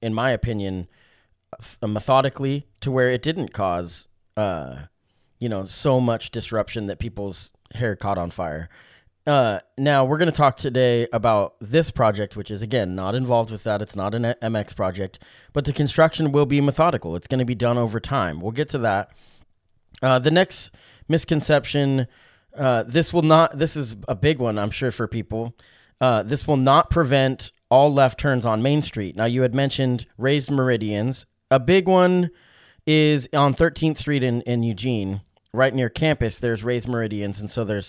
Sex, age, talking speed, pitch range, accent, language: male, 30-49, 180 wpm, 105-135 Hz, American, English